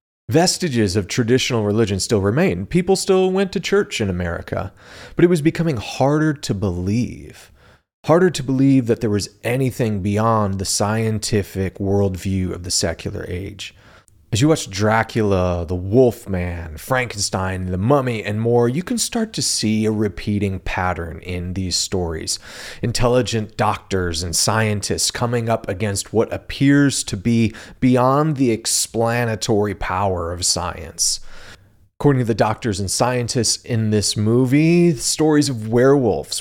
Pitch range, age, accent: 95-125 Hz, 30-49, American